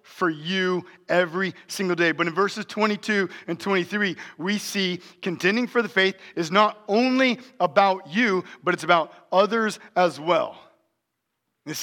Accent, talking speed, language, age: American, 145 wpm, English, 40-59